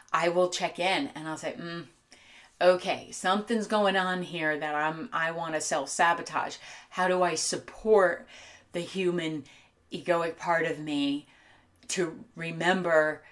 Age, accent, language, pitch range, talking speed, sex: 30-49, American, English, 155-180 Hz, 145 wpm, female